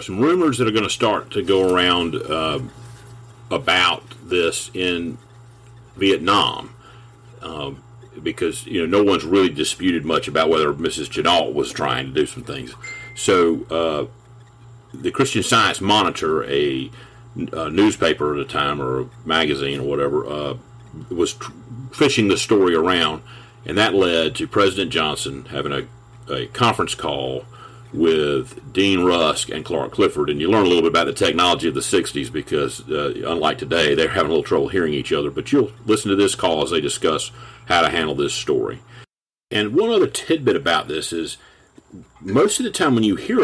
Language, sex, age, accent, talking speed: English, male, 50-69, American, 175 wpm